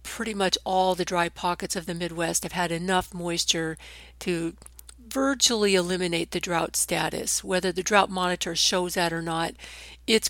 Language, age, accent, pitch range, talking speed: English, 50-69, American, 175-200 Hz, 165 wpm